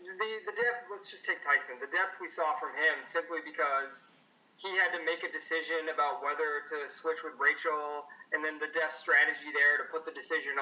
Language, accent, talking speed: English, American, 210 wpm